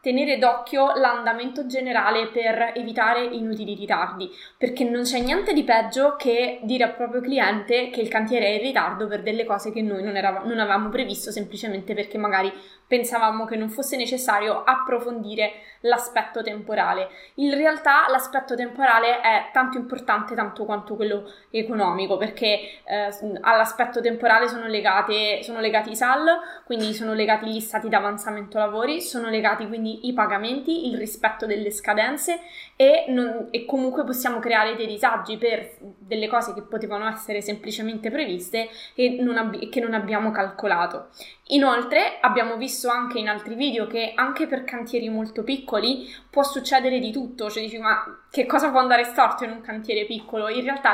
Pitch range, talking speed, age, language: 215-255 Hz, 160 wpm, 20-39, Italian